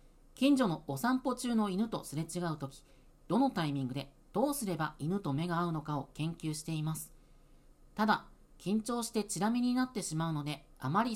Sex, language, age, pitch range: female, Japanese, 40-59, 150-230 Hz